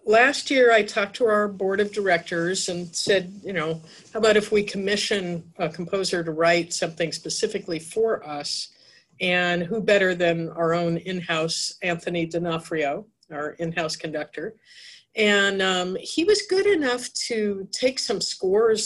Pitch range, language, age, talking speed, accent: 165-210 Hz, English, 50-69, 155 wpm, American